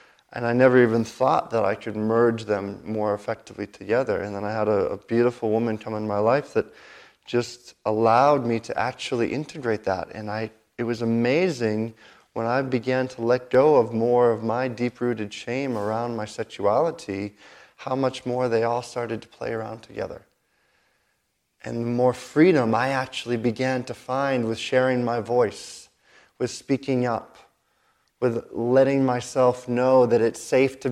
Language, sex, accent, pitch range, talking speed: English, male, American, 110-125 Hz, 170 wpm